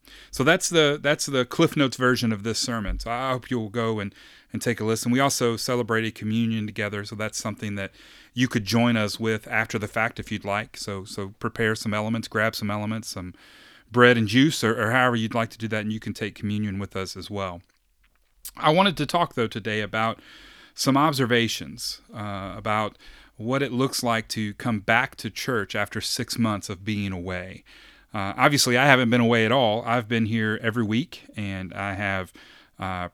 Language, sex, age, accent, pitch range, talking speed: English, male, 30-49, American, 105-130 Hz, 205 wpm